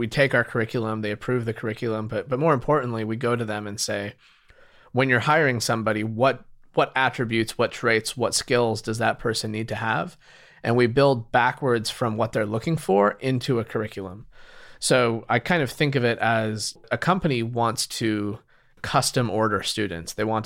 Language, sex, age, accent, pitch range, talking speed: English, male, 30-49, American, 110-125 Hz, 190 wpm